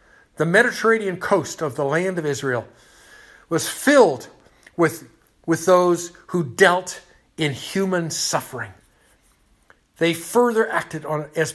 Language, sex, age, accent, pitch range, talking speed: English, male, 60-79, American, 155-215 Hz, 115 wpm